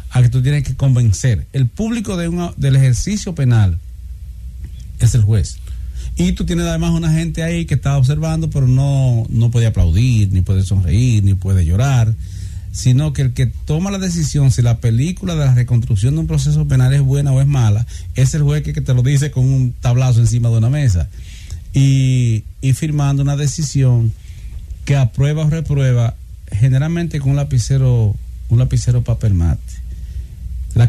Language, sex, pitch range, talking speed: English, male, 105-140 Hz, 180 wpm